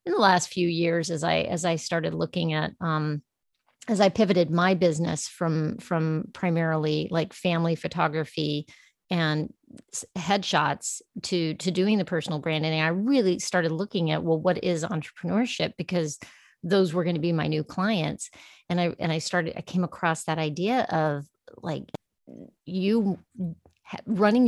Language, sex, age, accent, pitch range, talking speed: English, female, 30-49, American, 160-185 Hz, 155 wpm